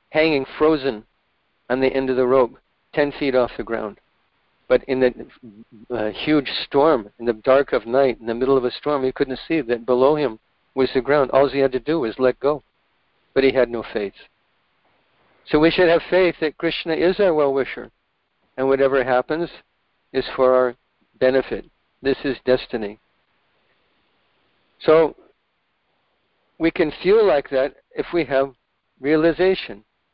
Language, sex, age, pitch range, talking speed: English, male, 50-69, 130-155 Hz, 165 wpm